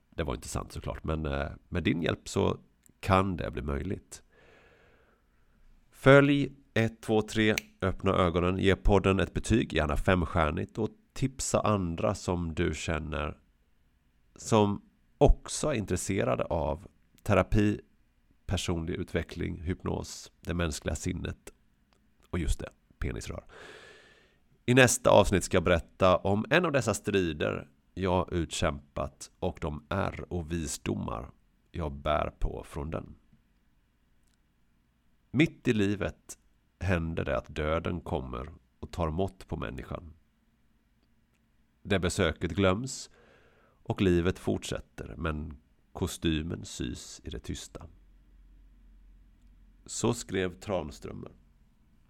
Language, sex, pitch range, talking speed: Swedish, male, 75-100 Hz, 115 wpm